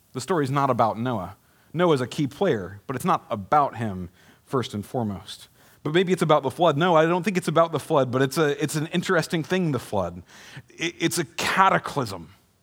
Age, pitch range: 40-59, 105-140 Hz